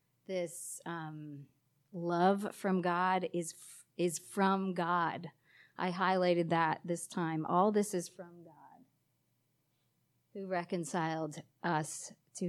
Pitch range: 145-180 Hz